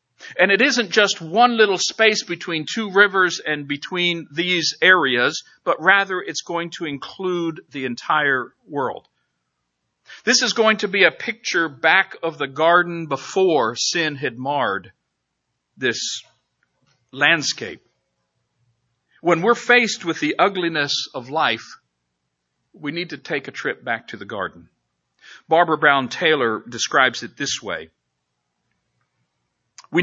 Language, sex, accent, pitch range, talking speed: English, male, American, 115-185 Hz, 130 wpm